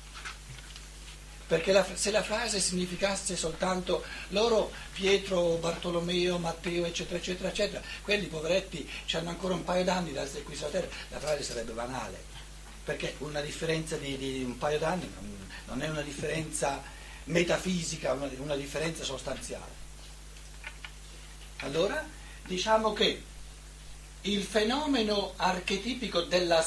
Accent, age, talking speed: native, 60-79, 125 wpm